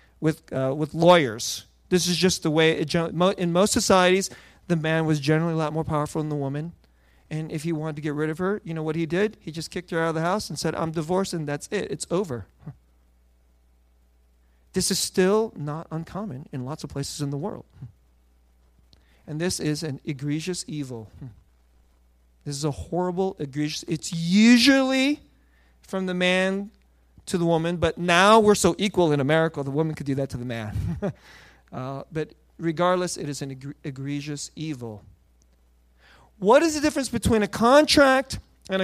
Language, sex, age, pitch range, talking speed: English, male, 40-59, 135-200 Hz, 185 wpm